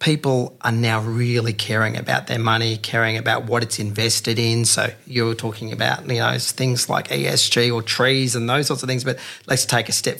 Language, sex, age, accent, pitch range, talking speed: English, male, 40-59, Australian, 110-125 Hz, 210 wpm